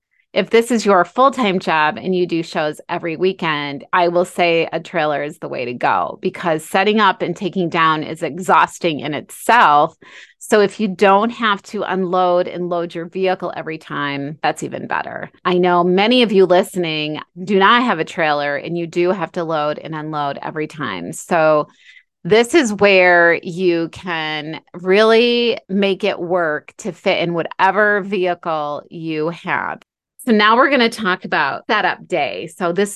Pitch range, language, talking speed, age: 165-200 Hz, English, 175 wpm, 30-49